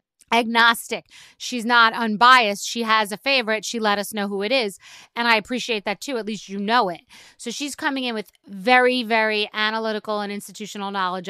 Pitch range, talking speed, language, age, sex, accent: 200-245 Hz, 190 wpm, English, 30-49, female, American